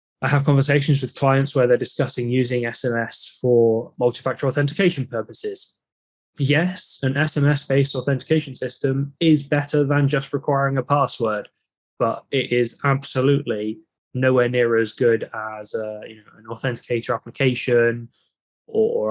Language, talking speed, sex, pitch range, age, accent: English, 125 wpm, male, 120-150 Hz, 10-29, British